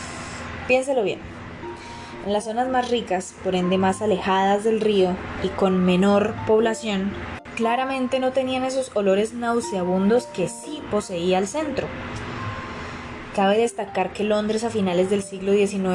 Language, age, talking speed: Spanish, 20-39, 140 wpm